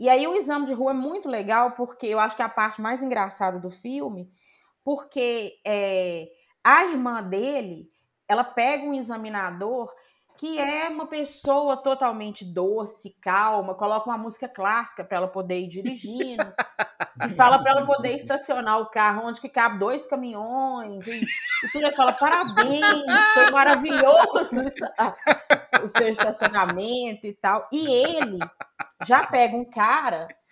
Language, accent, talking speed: Portuguese, Brazilian, 150 wpm